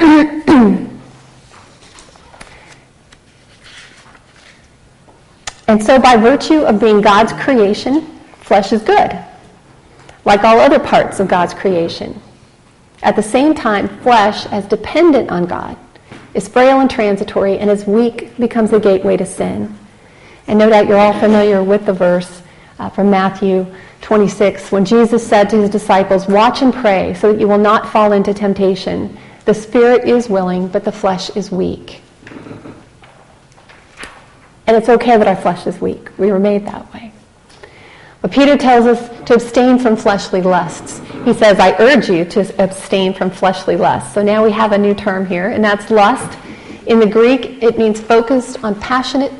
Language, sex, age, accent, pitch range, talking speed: English, female, 40-59, American, 195-230 Hz, 155 wpm